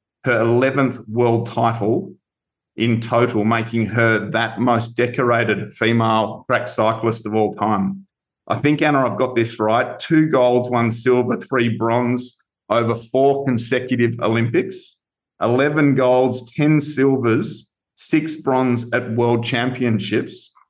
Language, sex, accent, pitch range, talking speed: English, male, Australian, 115-130 Hz, 125 wpm